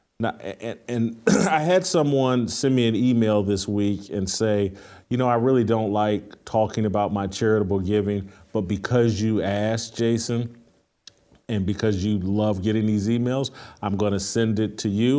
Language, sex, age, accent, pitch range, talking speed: English, male, 40-59, American, 105-125 Hz, 175 wpm